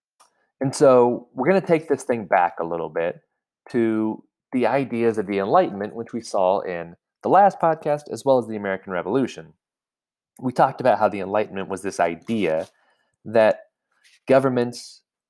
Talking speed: 165 wpm